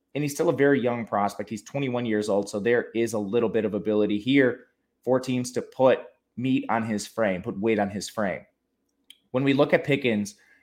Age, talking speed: 20-39, 215 wpm